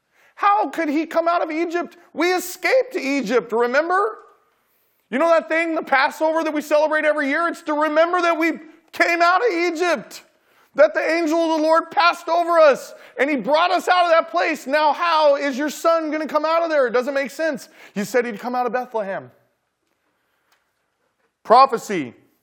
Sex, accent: male, American